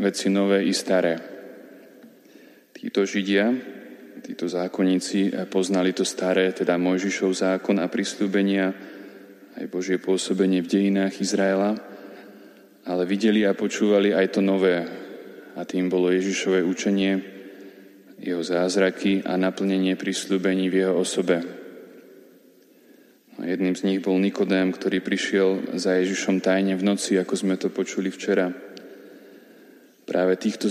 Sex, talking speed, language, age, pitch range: male, 125 wpm, Slovak, 20-39, 95-100 Hz